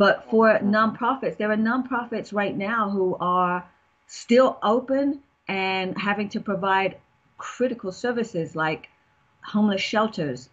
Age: 40-59